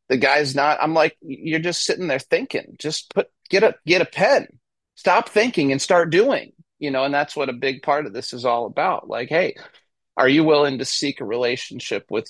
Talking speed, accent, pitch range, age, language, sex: 220 wpm, American, 125-155 Hz, 30-49, English, male